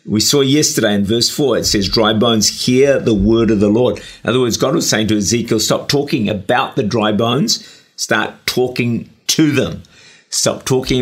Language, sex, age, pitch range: English, male, 50-69, 100-130 Hz